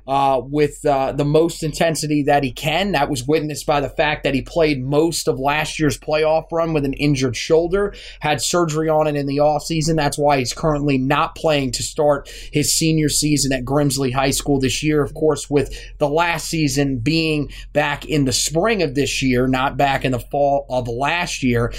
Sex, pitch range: male, 140-160 Hz